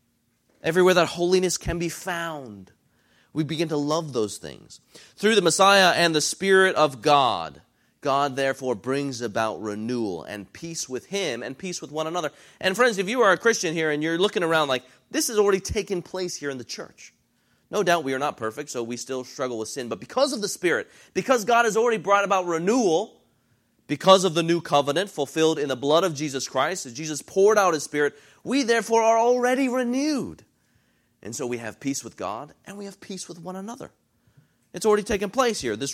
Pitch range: 130-190 Hz